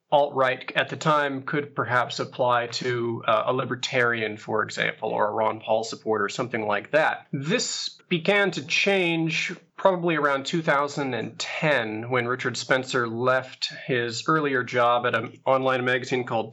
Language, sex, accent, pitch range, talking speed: English, male, American, 120-145 Hz, 145 wpm